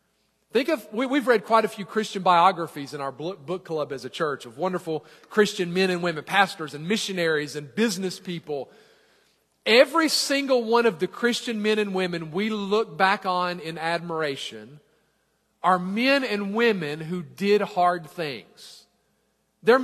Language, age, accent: English, 40-59, American